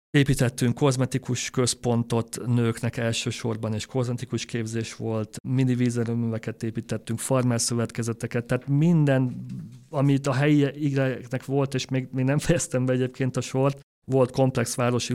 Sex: male